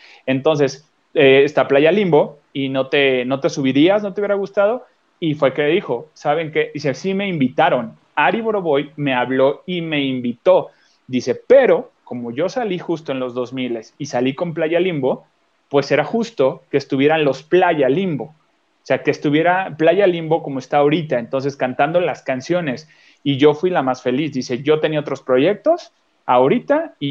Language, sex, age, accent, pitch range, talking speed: Spanish, male, 30-49, Mexican, 130-175 Hz, 175 wpm